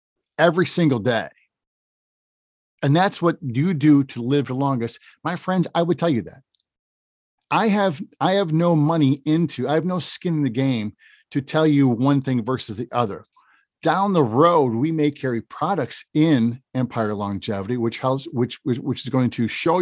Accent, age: American, 50-69